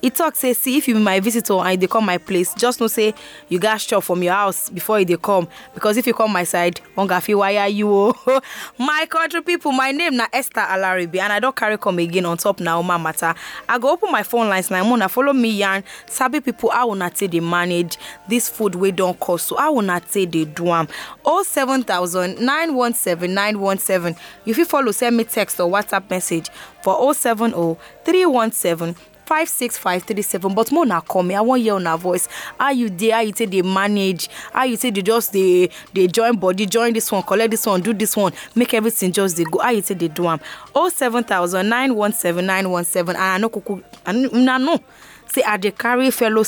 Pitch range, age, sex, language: 185-240 Hz, 20-39, female, English